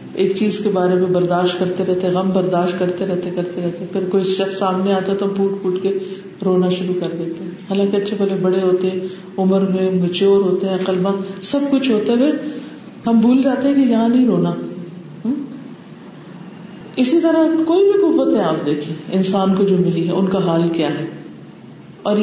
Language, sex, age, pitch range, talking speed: Urdu, female, 50-69, 185-255 Hz, 195 wpm